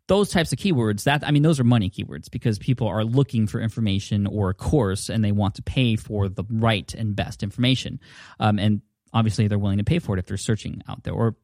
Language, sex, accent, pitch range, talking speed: English, male, American, 105-130 Hz, 240 wpm